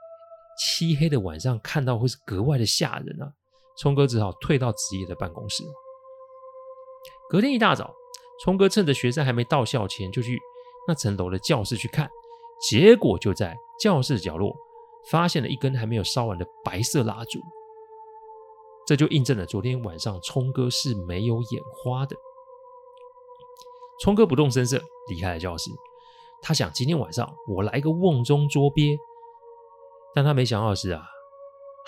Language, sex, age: Chinese, male, 30-49